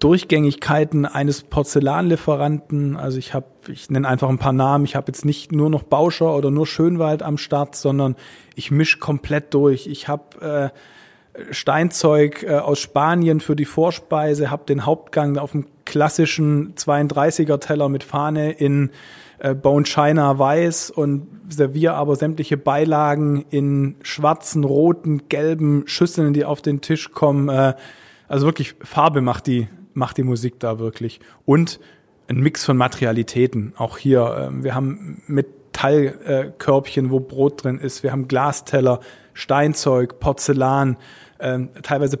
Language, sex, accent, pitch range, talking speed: German, male, German, 135-150 Hz, 140 wpm